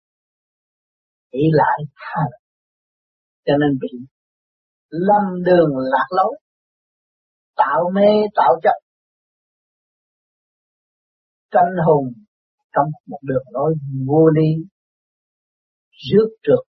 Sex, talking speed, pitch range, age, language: male, 90 wpm, 140-185 Hz, 50-69, Vietnamese